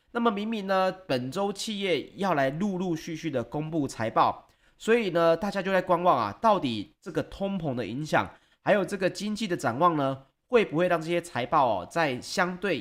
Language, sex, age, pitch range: Chinese, male, 30-49, 130-185 Hz